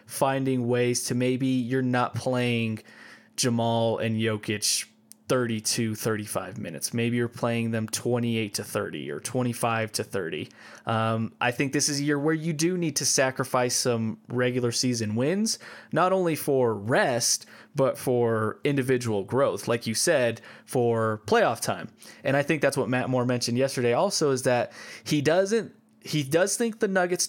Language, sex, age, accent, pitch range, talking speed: English, male, 20-39, American, 115-140 Hz, 165 wpm